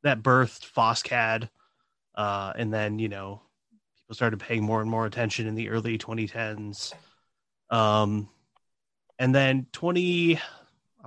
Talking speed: 130 wpm